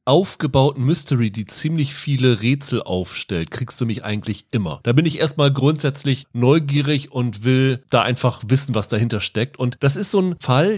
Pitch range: 125-150 Hz